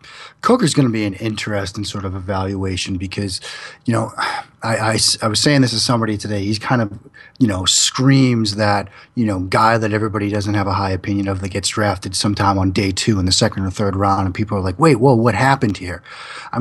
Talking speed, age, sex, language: 225 wpm, 30-49, male, English